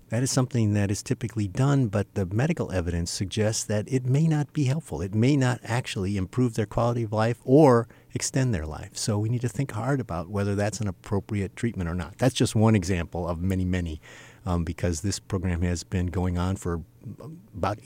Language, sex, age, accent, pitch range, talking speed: English, male, 50-69, American, 100-130 Hz, 210 wpm